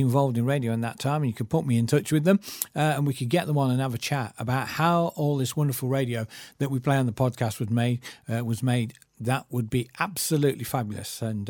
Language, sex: English, male